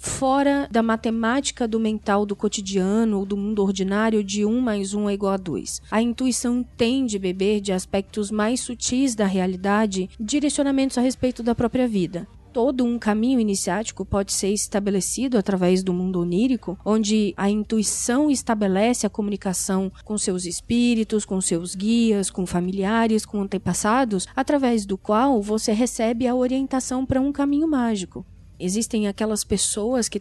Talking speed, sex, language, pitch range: 155 wpm, female, Portuguese, 195-230 Hz